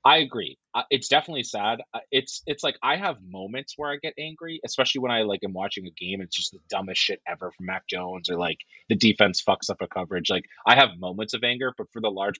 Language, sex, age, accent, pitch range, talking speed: English, male, 30-49, American, 95-130 Hz, 255 wpm